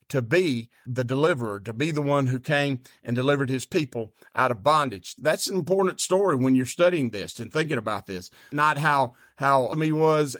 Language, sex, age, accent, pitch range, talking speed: English, male, 50-69, American, 130-160 Hz, 195 wpm